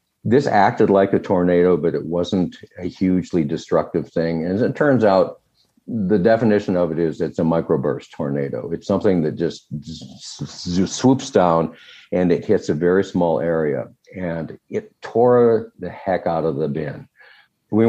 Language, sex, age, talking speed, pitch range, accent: English, male, 60-79, 165 wpm, 80-100 Hz, American